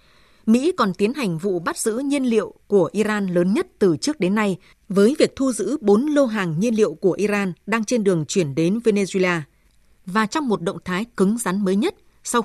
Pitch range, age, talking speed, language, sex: 180-235 Hz, 20-39, 210 wpm, Vietnamese, female